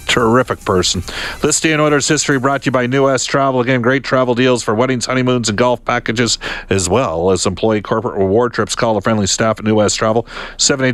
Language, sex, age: English, male, 50-69